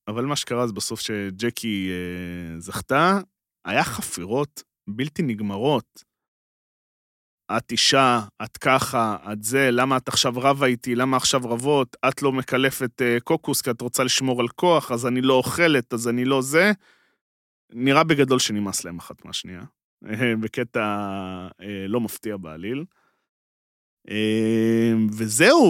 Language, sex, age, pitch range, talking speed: Hebrew, male, 30-49, 110-140 Hz, 130 wpm